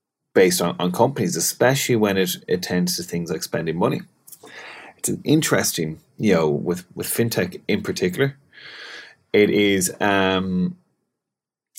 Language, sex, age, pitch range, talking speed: English, male, 30-49, 90-120 Hz, 135 wpm